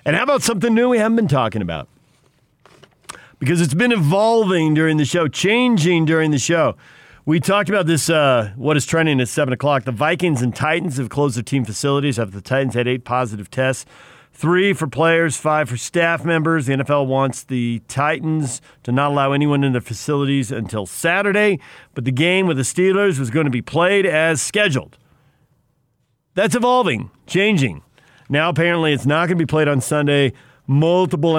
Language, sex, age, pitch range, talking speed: English, male, 50-69, 125-160 Hz, 185 wpm